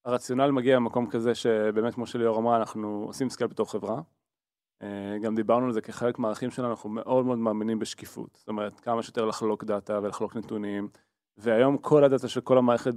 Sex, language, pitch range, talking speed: male, Hebrew, 115-135 Hz, 180 wpm